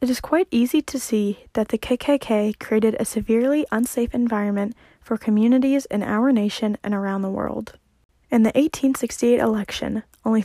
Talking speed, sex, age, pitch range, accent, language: 160 wpm, female, 10-29, 205-245 Hz, American, English